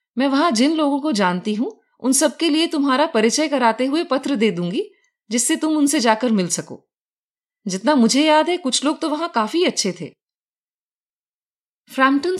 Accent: native